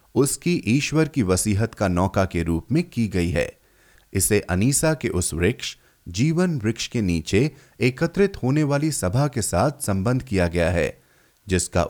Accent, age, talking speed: native, 30-49, 160 wpm